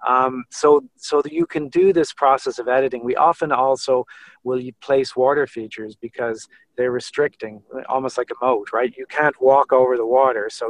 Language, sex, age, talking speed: English, male, 40-59, 185 wpm